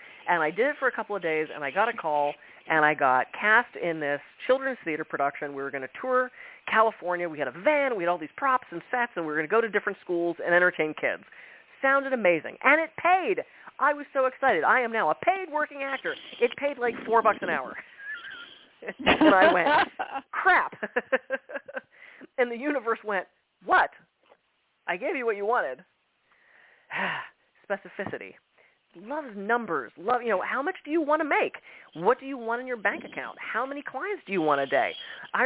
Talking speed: 205 wpm